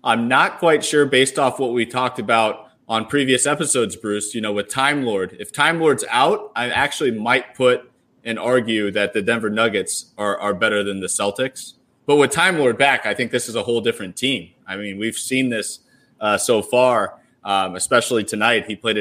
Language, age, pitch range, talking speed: English, 30-49, 110-140 Hz, 205 wpm